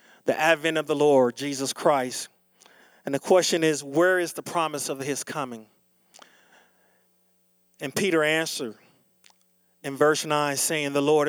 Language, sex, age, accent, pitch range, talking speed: English, male, 40-59, American, 140-185 Hz, 145 wpm